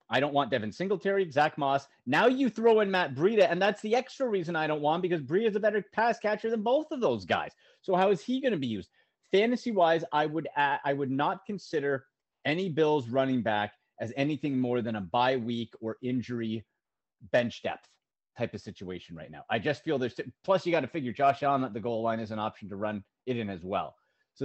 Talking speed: 235 wpm